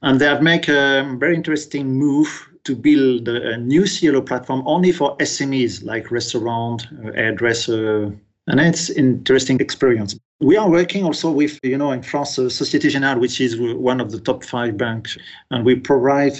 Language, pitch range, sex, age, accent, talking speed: English, 120-140 Hz, male, 40-59, French, 170 wpm